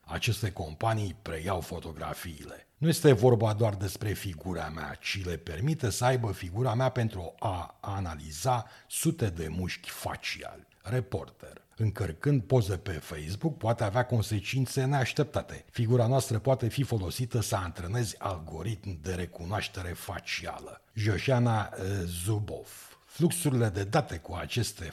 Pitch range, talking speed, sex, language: 85-125 Hz, 125 wpm, male, Romanian